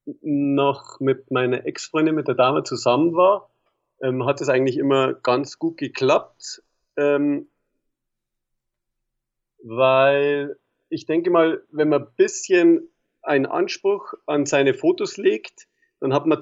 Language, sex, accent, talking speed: German, male, German, 130 wpm